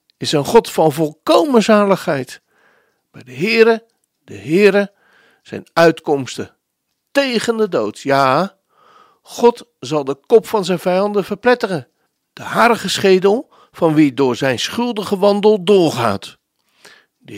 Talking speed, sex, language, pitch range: 125 wpm, male, Dutch, 165-220 Hz